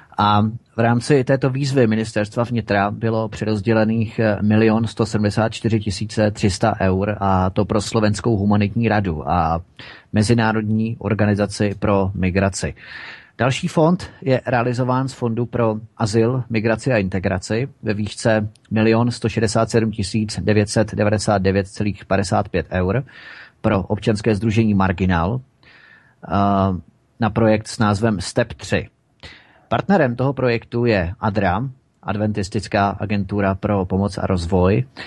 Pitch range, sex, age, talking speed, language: 100-115 Hz, male, 30-49, 105 wpm, Czech